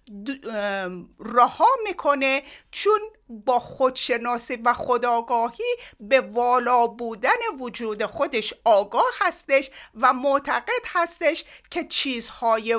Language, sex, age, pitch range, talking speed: Persian, female, 50-69, 220-315 Hz, 95 wpm